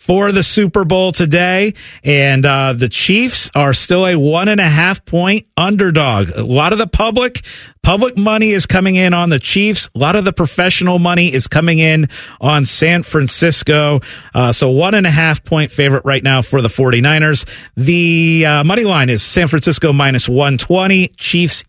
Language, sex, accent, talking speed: English, male, American, 185 wpm